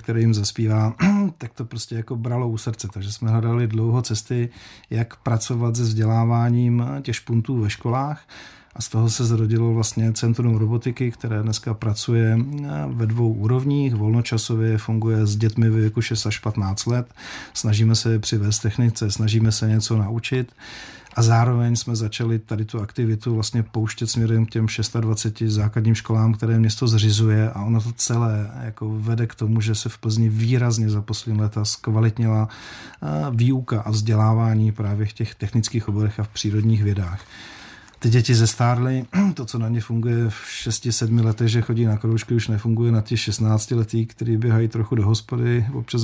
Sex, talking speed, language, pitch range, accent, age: male, 170 wpm, Czech, 110-120 Hz, native, 40-59